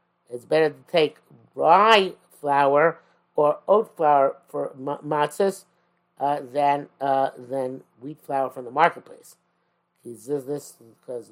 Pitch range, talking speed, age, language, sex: 140-190 Hz, 120 wpm, 50-69, English, male